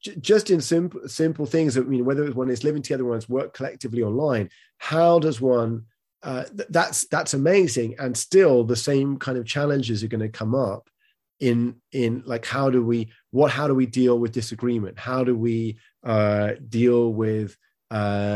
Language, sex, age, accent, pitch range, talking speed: English, male, 30-49, British, 115-145 Hz, 185 wpm